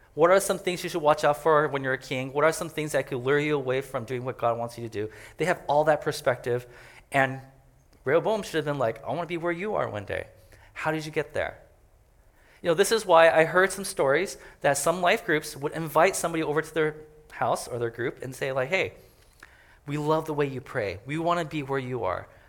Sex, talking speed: male, 255 wpm